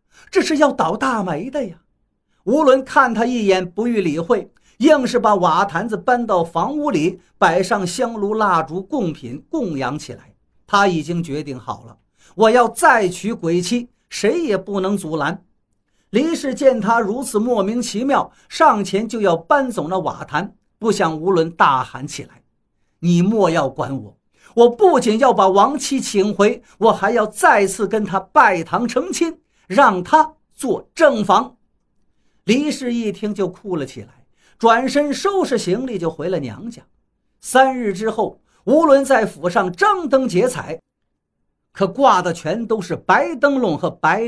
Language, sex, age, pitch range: Chinese, male, 50-69, 170-250 Hz